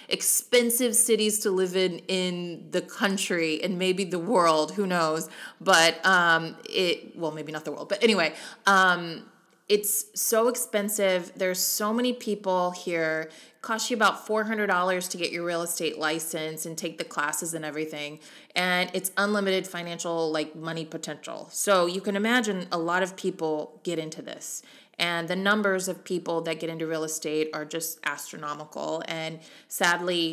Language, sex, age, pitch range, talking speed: English, female, 20-39, 165-195 Hz, 165 wpm